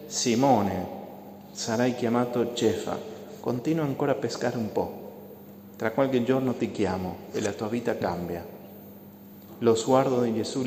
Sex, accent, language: male, Argentinian, Italian